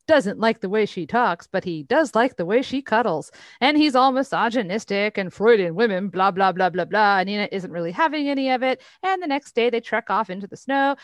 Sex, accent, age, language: female, American, 40-59, English